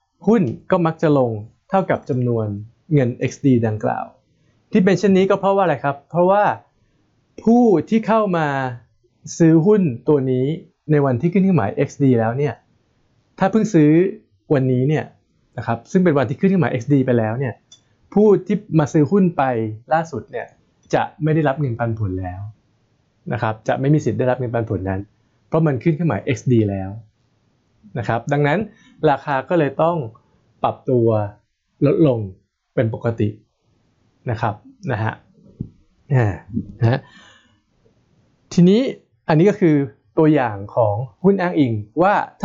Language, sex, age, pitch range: Thai, male, 20-39, 115-165 Hz